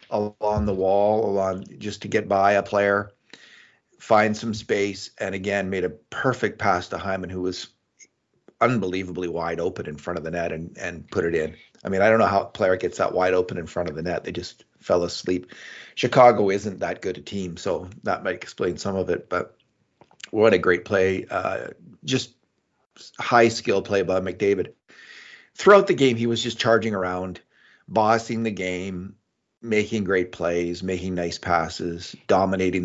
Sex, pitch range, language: male, 90-115 Hz, English